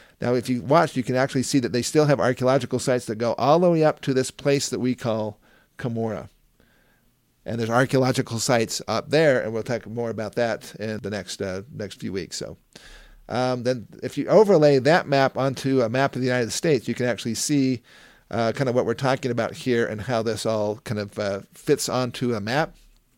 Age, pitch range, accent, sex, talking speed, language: 50-69, 115-140 Hz, American, male, 215 wpm, English